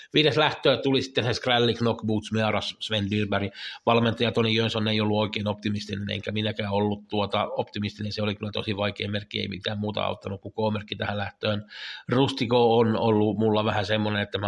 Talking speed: 180 wpm